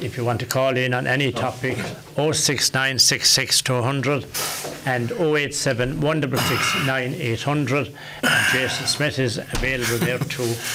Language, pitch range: English, 120-135 Hz